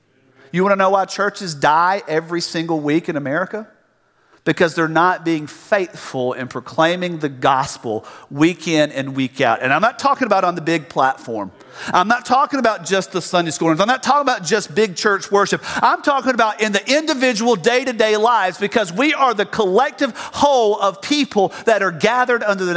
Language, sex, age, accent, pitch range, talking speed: English, male, 50-69, American, 165-235 Hz, 190 wpm